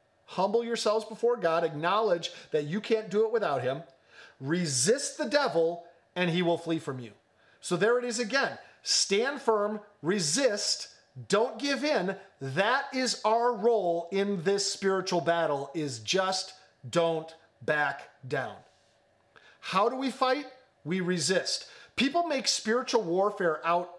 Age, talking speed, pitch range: 40-59, 140 wpm, 160-220 Hz